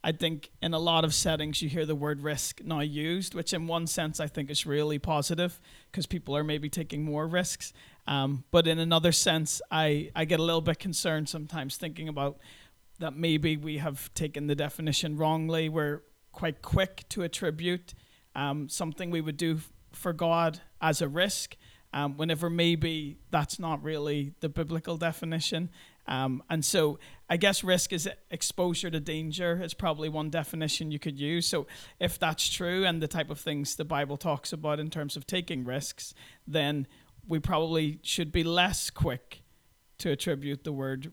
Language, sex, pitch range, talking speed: English, male, 145-165 Hz, 180 wpm